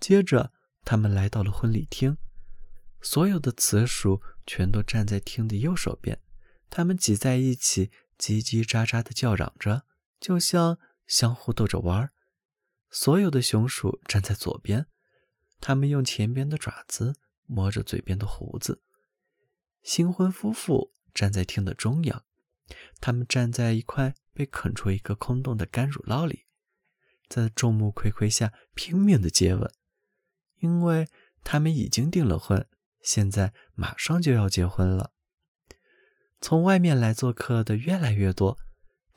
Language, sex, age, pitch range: Chinese, male, 20-39, 100-145 Hz